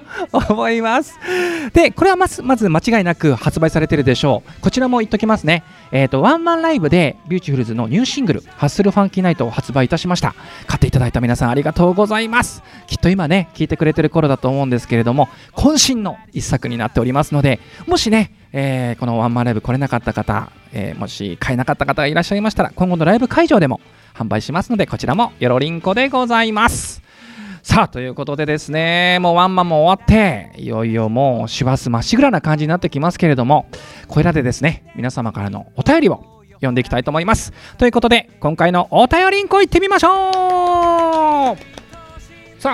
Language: Japanese